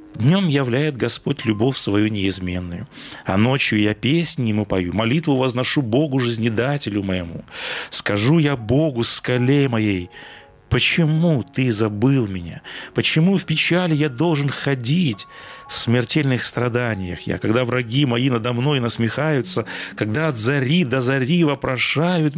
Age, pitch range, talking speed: 30-49, 110-155 Hz, 130 wpm